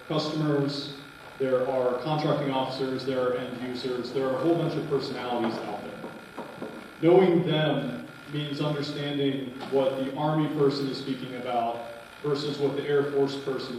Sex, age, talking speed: male, 30-49, 150 wpm